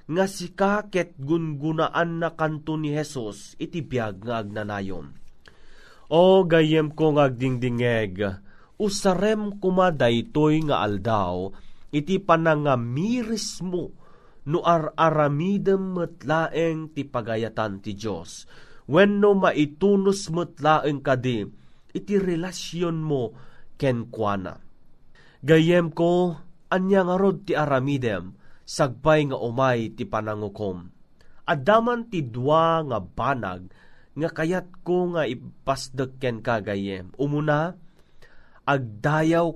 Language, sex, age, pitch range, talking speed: Filipino, male, 30-49, 125-175 Hz, 95 wpm